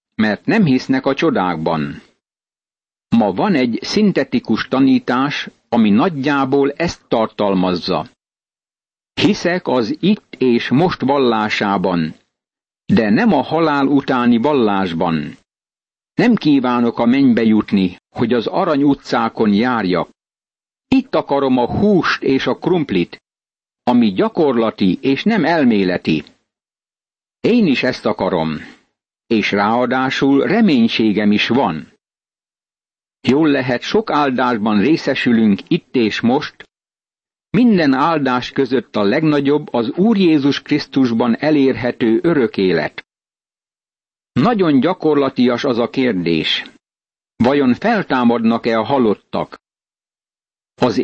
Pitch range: 115-165 Hz